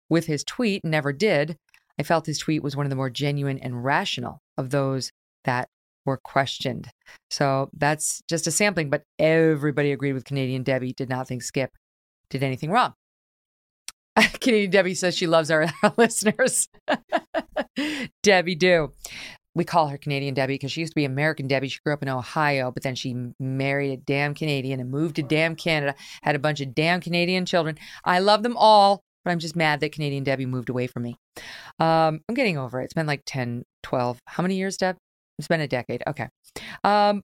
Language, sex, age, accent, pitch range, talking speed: English, female, 40-59, American, 140-185 Hz, 195 wpm